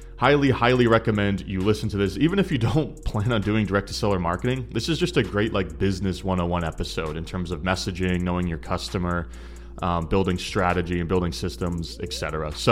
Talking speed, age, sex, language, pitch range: 190 wpm, 30-49, male, English, 90-110 Hz